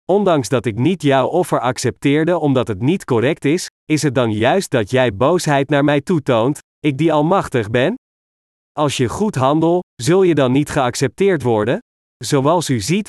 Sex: male